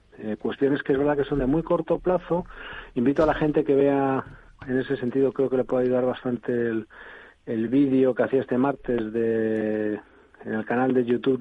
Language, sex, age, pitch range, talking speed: Spanish, male, 40-59, 115-140 Hz, 205 wpm